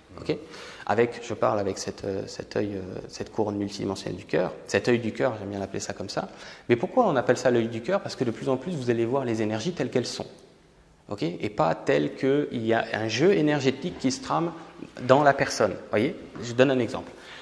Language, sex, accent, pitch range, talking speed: French, male, French, 110-145 Hz, 235 wpm